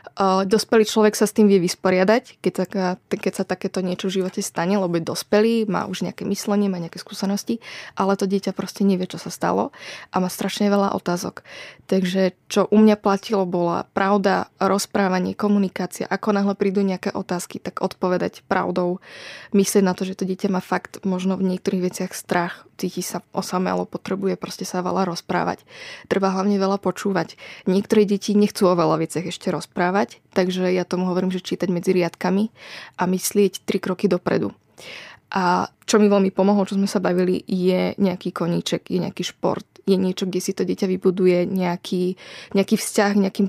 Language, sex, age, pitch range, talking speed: Slovak, female, 20-39, 185-200 Hz, 170 wpm